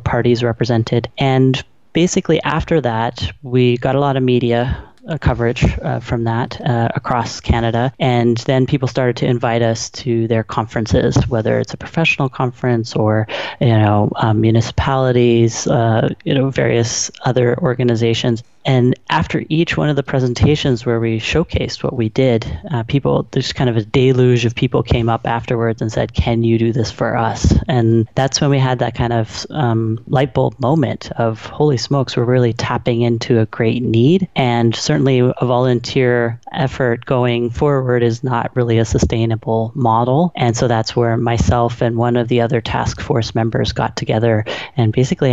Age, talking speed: 30-49, 170 wpm